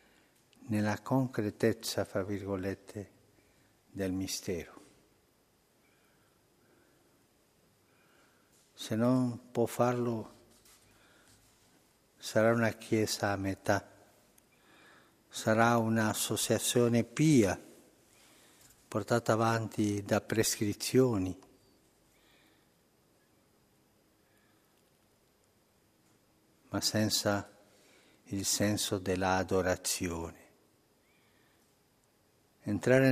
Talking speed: 50 wpm